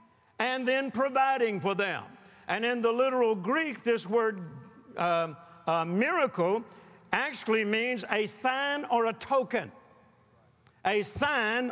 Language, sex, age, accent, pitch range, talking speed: English, male, 60-79, American, 210-260 Hz, 125 wpm